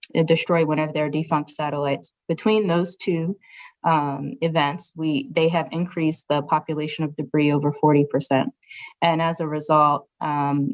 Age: 20-39